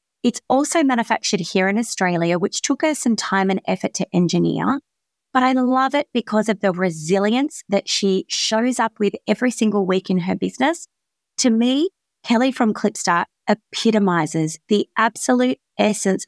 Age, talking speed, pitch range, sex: 30-49, 160 wpm, 185-245 Hz, female